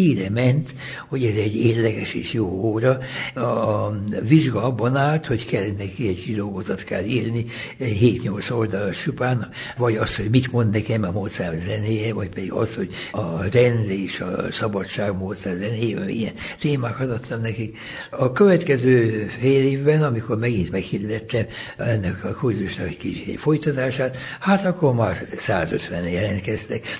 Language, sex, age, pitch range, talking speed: Hungarian, male, 60-79, 105-130 Hz, 145 wpm